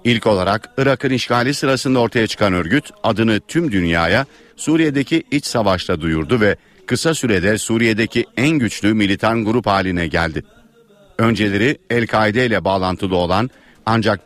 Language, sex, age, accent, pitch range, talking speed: Turkish, male, 50-69, native, 95-120 Hz, 130 wpm